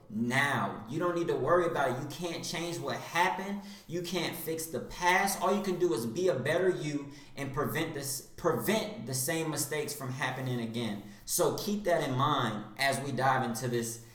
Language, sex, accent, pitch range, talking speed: English, male, American, 120-175 Hz, 200 wpm